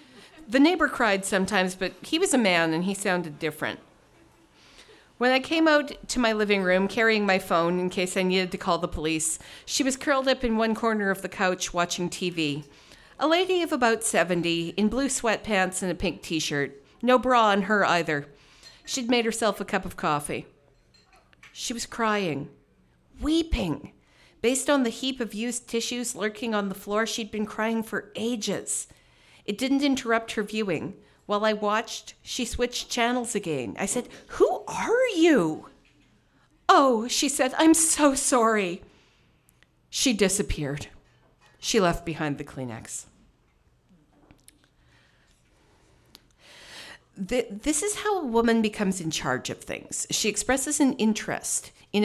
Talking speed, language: 155 wpm, English